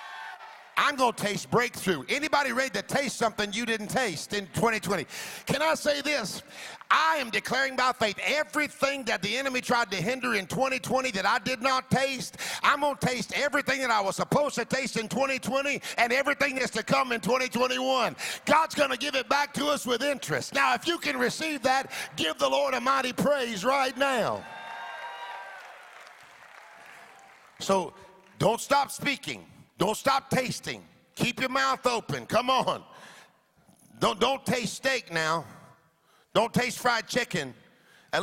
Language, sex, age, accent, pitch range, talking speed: English, male, 50-69, American, 205-265 Hz, 160 wpm